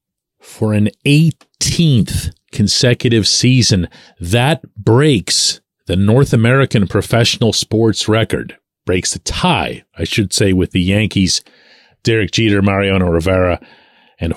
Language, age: English, 40-59